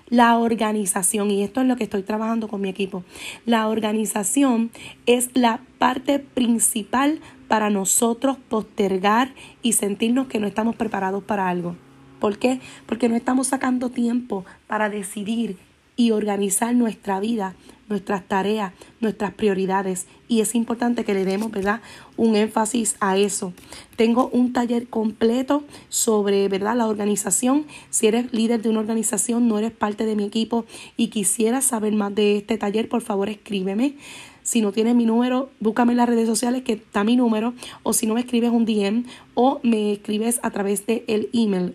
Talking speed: 165 wpm